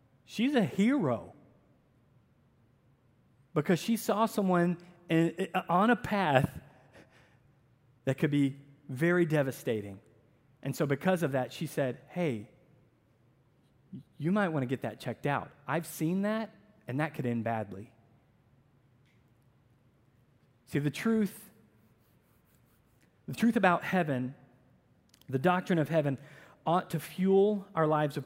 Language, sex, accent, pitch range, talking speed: English, male, American, 130-175 Hz, 125 wpm